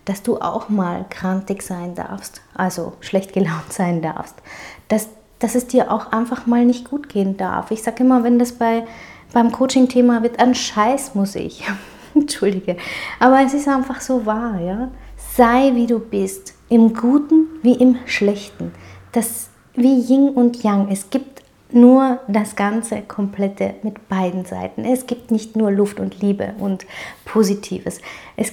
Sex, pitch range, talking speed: female, 200-245 Hz, 160 wpm